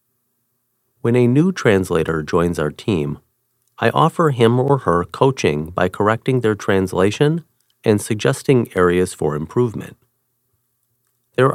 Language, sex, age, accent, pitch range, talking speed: English, male, 40-59, American, 95-125 Hz, 120 wpm